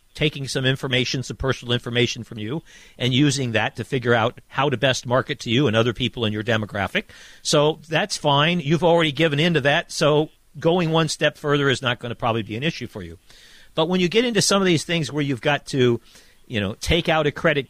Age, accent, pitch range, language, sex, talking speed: 50-69, American, 130-175 Hz, English, male, 230 wpm